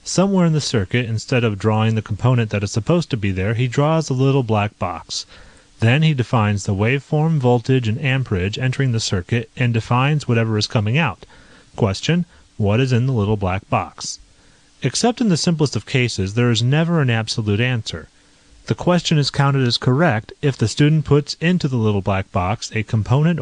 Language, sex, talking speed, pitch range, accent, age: English, male, 190 wpm, 105-140 Hz, American, 30-49